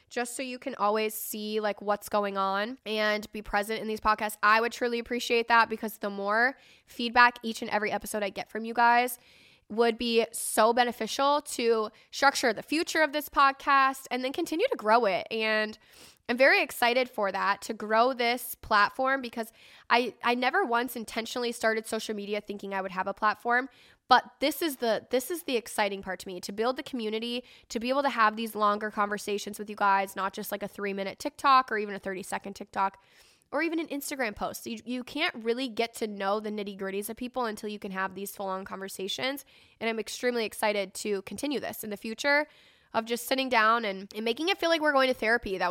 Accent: American